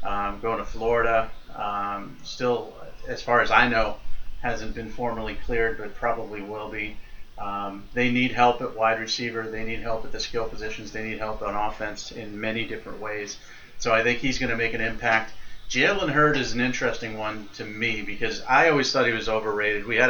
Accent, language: American, English